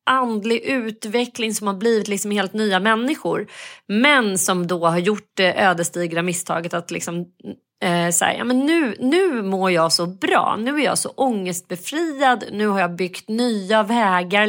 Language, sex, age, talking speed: Swedish, female, 30-49, 160 wpm